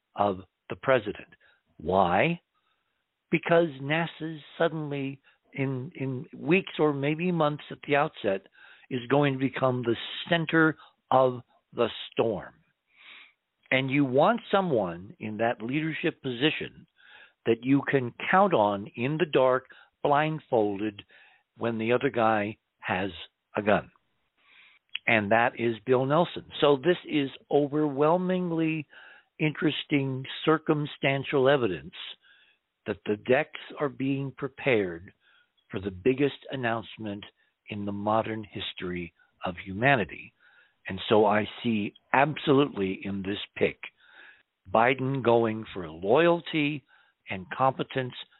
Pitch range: 110-150 Hz